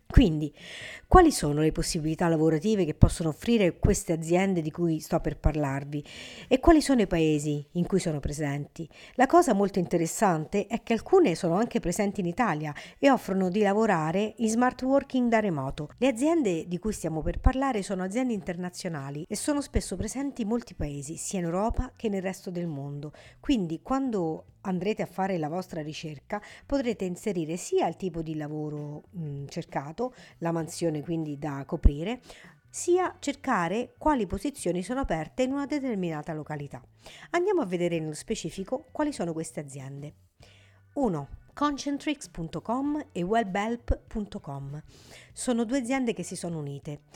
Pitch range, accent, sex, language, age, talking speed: 160-235 Hz, native, female, Italian, 50-69, 155 wpm